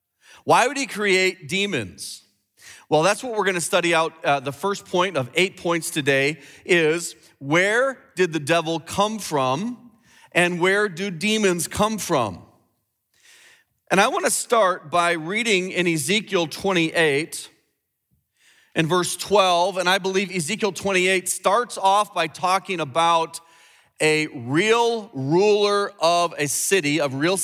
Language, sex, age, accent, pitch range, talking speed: English, male, 40-59, American, 155-195 Hz, 140 wpm